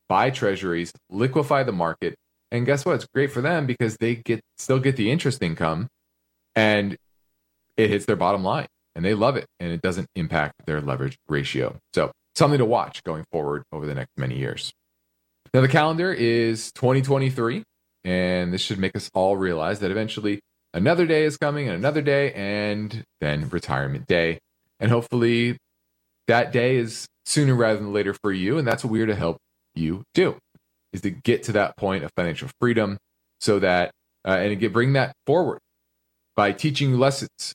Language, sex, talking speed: English, male, 180 wpm